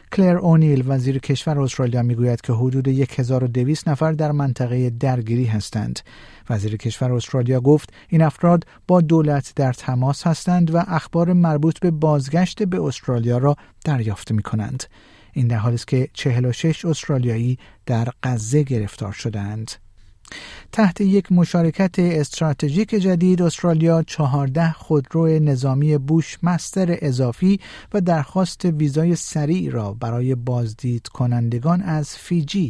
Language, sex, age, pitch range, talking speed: Persian, male, 50-69, 125-170 Hz, 135 wpm